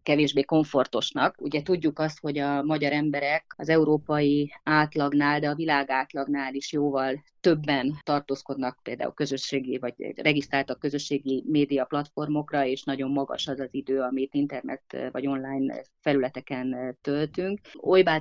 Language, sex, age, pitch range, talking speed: Hungarian, female, 30-49, 135-150 Hz, 130 wpm